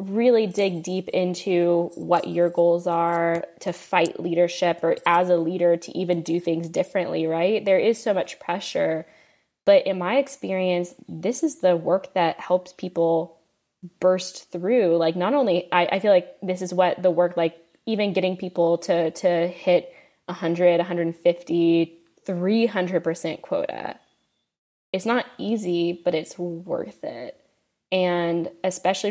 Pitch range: 170-190 Hz